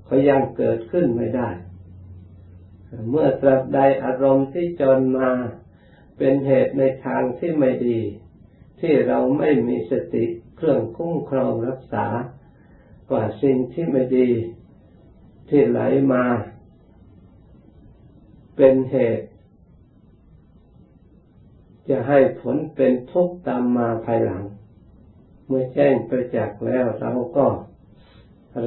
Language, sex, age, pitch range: Thai, male, 60-79, 110-135 Hz